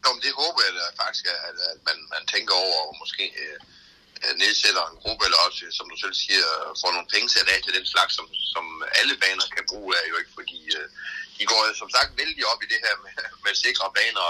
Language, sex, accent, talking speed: Danish, male, native, 220 wpm